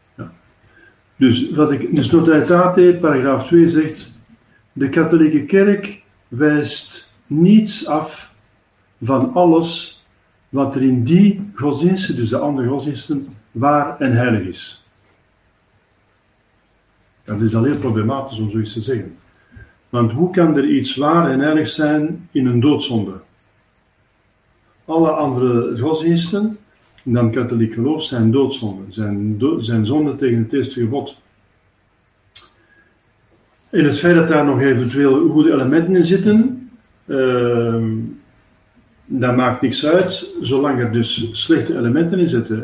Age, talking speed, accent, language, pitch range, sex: 50-69, 130 wpm, Dutch, Dutch, 110-155 Hz, male